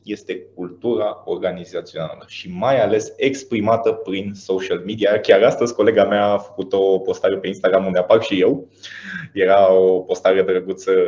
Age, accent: 20-39, native